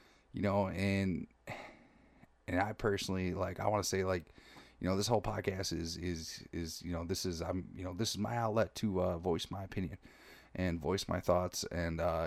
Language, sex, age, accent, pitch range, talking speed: English, male, 30-49, American, 85-100 Hz, 205 wpm